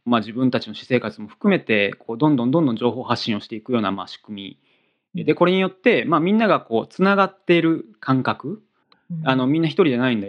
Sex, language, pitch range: male, Japanese, 110-165 Hz